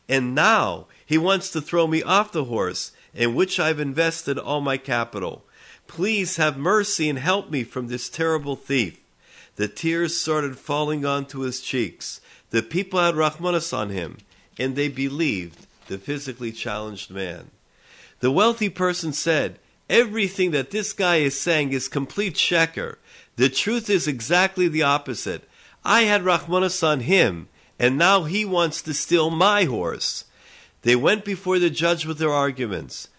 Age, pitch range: 50-69, 135-180 Hz